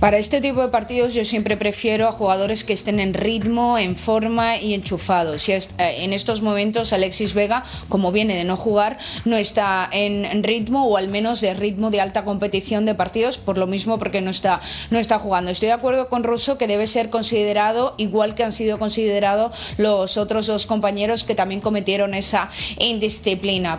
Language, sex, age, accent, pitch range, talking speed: Spanish, female, 20-39, Spanish, 200-250 Hz, 185 wpm